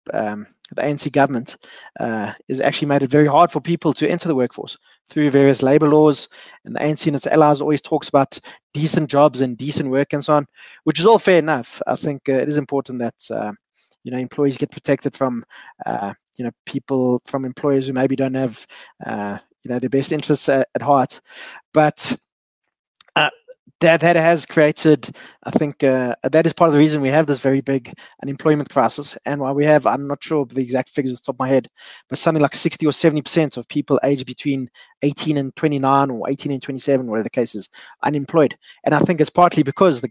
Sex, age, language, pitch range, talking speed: male, 20-39, English, 130-155 Hz, 215 wpm